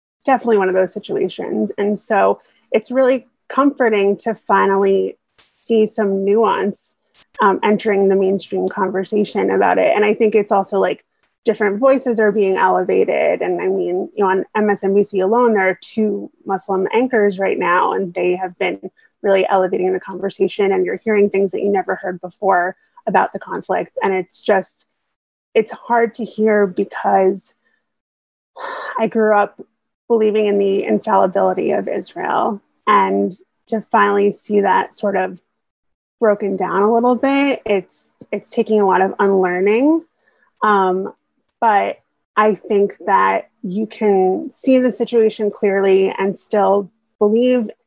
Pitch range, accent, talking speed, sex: 195-225 Hz, American, 150 wpm, female